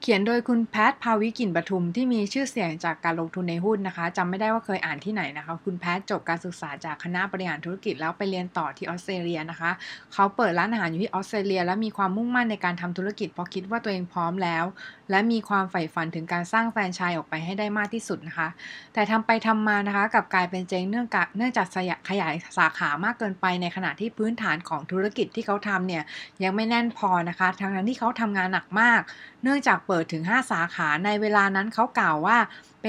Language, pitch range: Thai, 175-220 Hz